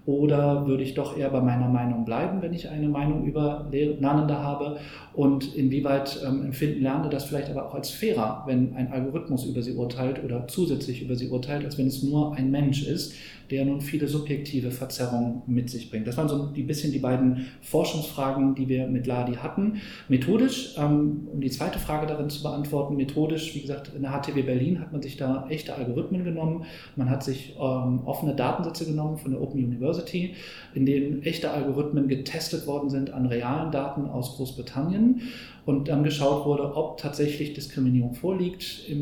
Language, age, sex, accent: German, 40-59, male, German